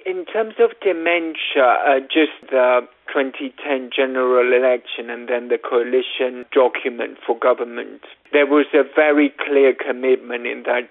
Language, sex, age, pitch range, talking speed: English, male, 50-69, 120-155 Hz, 140 wpm